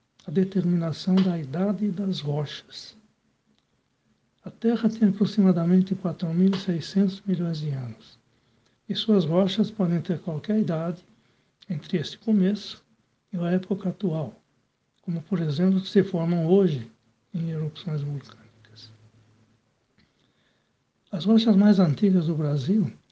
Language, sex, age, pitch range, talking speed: Portuguese, male, 60-79, 150-195 Hz, 110 wpm